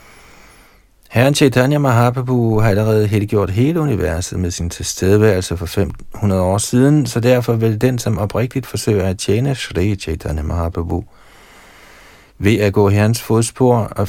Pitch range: 90-115 Hz